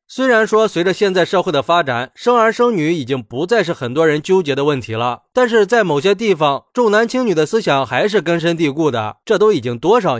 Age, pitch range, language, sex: 20-39, 145-220 Hz, Chinese, male